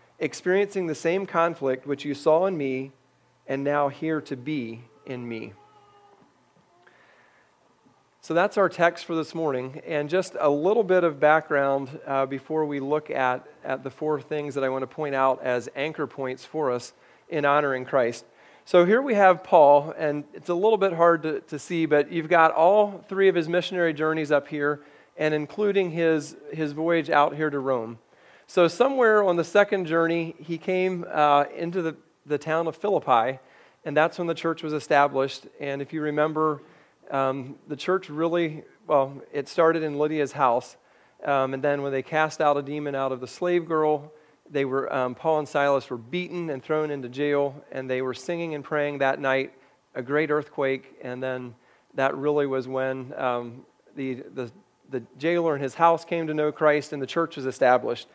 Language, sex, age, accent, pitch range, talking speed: English, male, 40-59, American, 135-165 Hz, 190 wpm